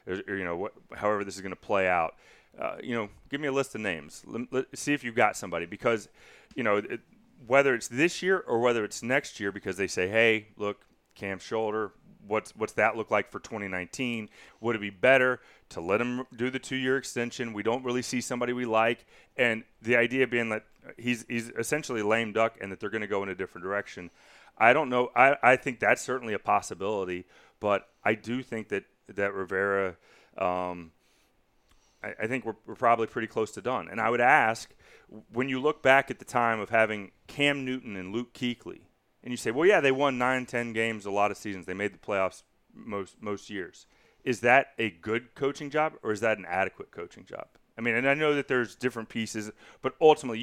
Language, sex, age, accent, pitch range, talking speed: English, male, 30-49, American, 105-130 Hz, 220 wpm